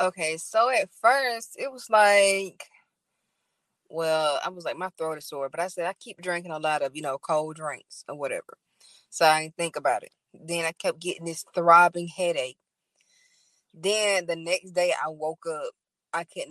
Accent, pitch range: American, 160-190 Hz